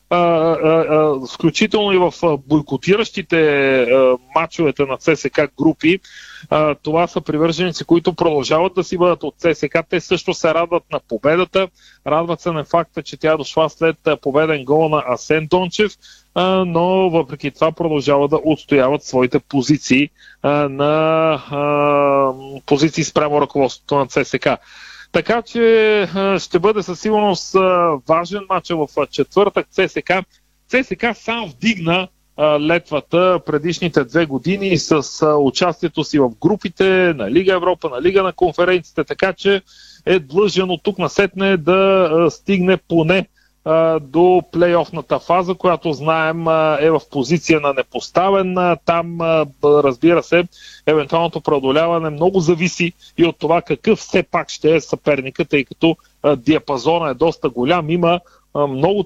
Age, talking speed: 30-49, 135 wpm